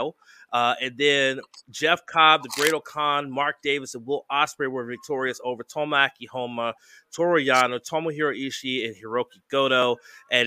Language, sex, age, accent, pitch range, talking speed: English, male, 30-49, American, 130-155 Hz, 145 wpm